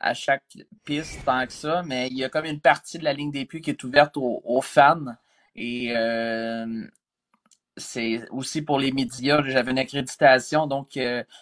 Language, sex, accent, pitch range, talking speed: French, male, Canadian, 120-145 Hz, 190 wpm